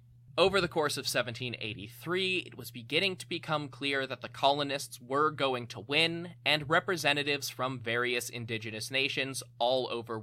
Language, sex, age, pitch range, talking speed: English, male, 20-39, 120-145 Hz, 155 wpm